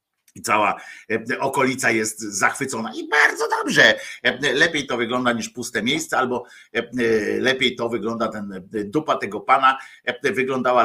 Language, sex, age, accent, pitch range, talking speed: Polish, male, 50-69, native, 130-185 Hz, 125 wpm